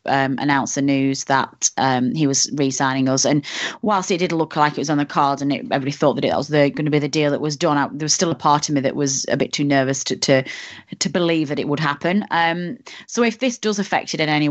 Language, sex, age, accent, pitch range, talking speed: English, female, 30-49, British, 145-170 Hz, 275 wpm